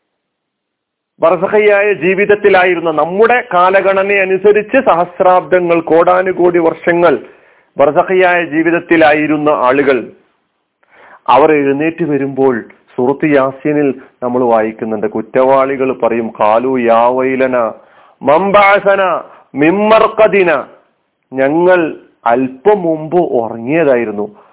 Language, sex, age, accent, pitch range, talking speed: Malayalam, male, 40-59, native, 140-195 Hz, 70 wpm